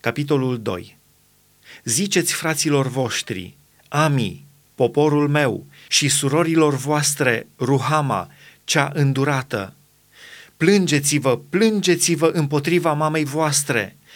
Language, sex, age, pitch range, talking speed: Romanian, male, 30-49, 140-170 Hz, 90 wpm